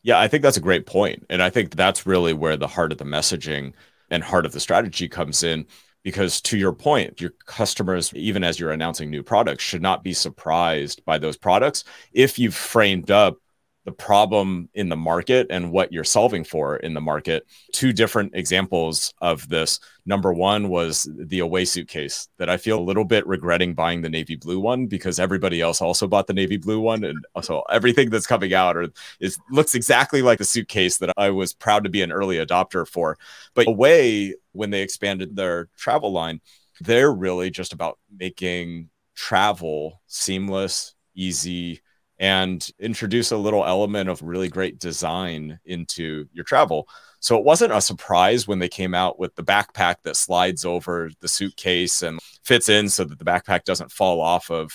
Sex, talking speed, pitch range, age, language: male, 190 wpm, 85-100 Hz, 30-49, English